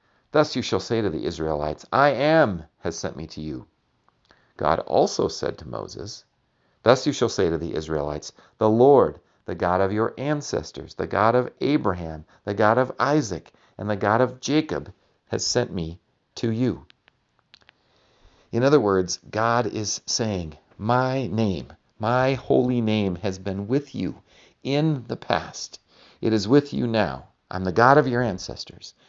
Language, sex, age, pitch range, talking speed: English, male, 50-69, 85-125 Hz, 165 wpm